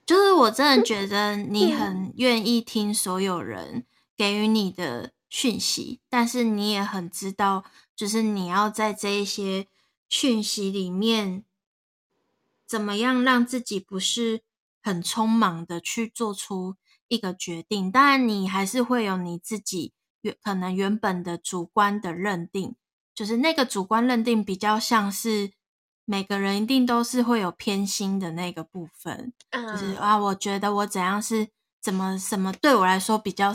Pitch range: 195-230 Hz